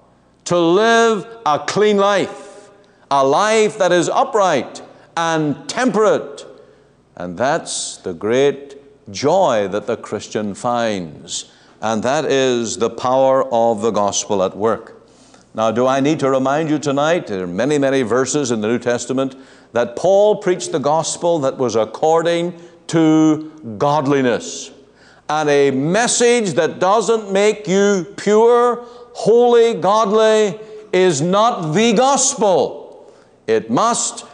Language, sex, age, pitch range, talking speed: English, male, 60-79, 130-215 Hz, 130 wpm